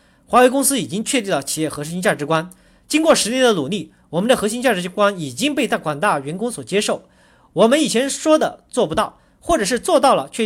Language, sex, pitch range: Chinese, male, 180-275 Hz